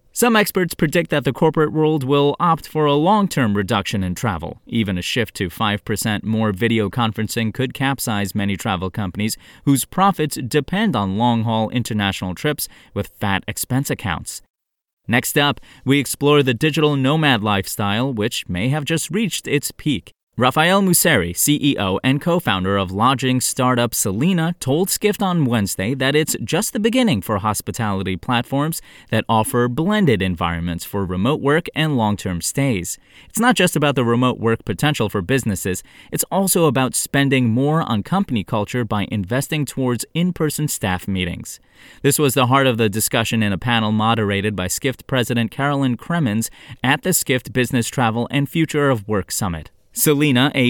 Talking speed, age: 160 wpm, 30-49